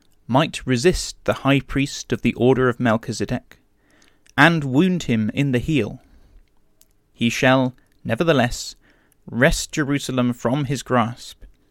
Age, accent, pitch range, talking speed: 30-49, British, 110-140 Hz, 125 wpm